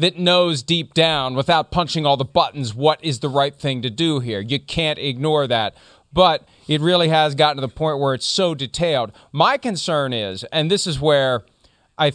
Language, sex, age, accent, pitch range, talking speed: English, male, 40-59, American, 130-175 Hz, 205 wpm